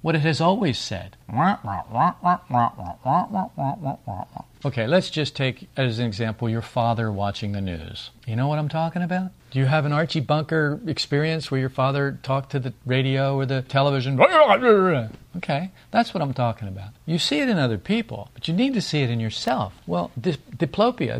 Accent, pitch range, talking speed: American, 120-185 Hz, 180 wpm